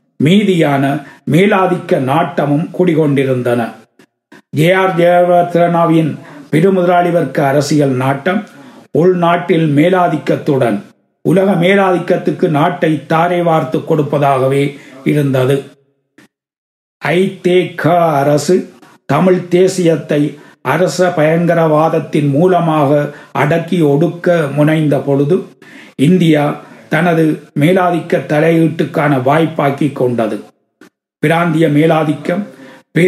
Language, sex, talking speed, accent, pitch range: Tamil, male, 65 wpm, native, 145-175 Hz